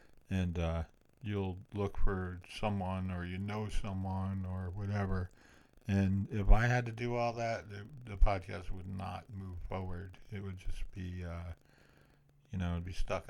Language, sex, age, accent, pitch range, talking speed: English, male, 50-69, American, 90-105 Hz, 165 wpm